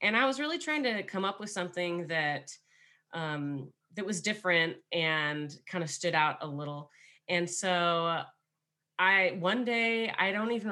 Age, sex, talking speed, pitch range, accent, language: 30-49, female, 170 wpm, 150-190 Hz, American, English